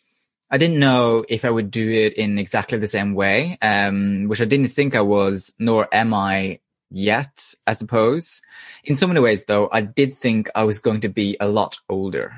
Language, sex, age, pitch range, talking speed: English, male, 20-39, 105-135 Hz, 205 wpm